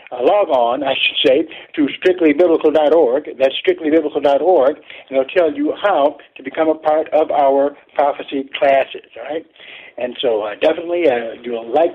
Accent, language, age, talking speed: American, English, 60-79, 160 wpm